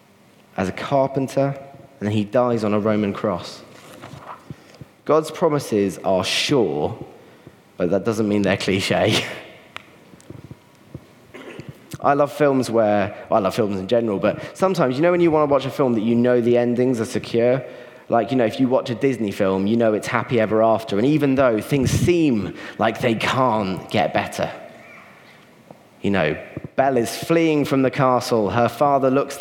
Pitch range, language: 110-150 Hz, English